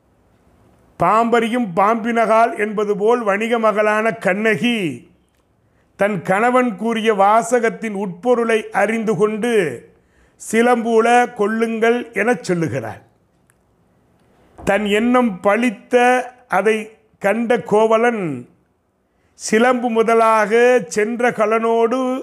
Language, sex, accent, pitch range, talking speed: Tamil, male, native, 175-230 Hz, 75 wpm